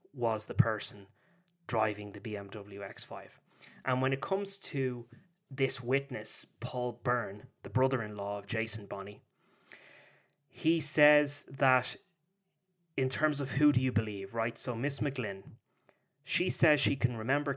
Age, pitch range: 20-39, 110-135 Hz